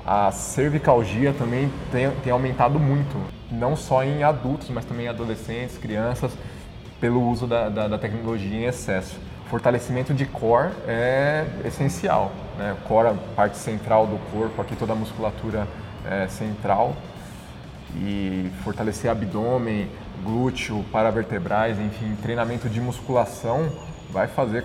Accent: Brazilian